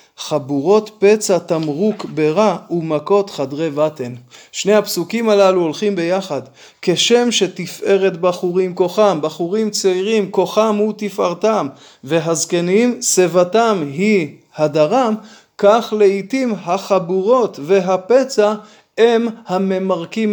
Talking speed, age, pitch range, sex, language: 90 wpm, 20-39, 175-210 Hz, male, Hebrew